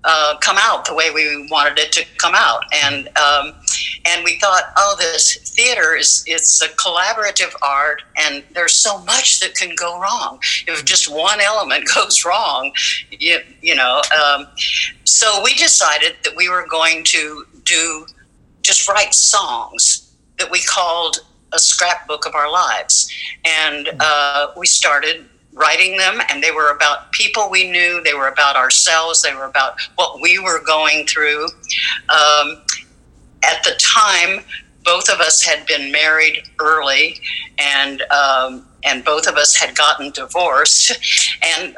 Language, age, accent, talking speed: English, 60-79, American, 155 wpm